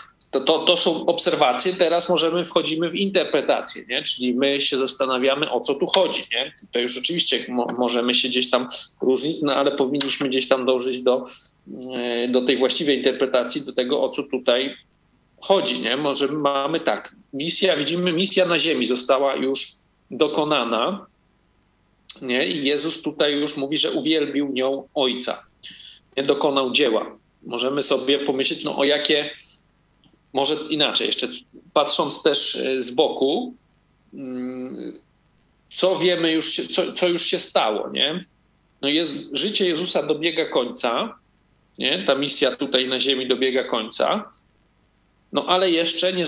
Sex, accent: male, native